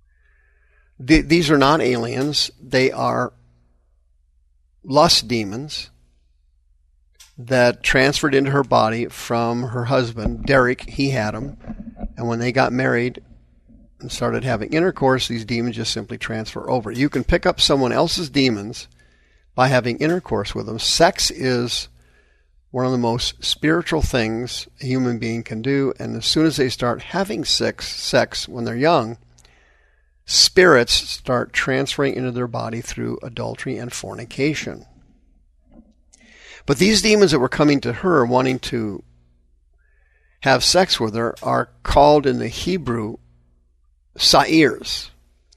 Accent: American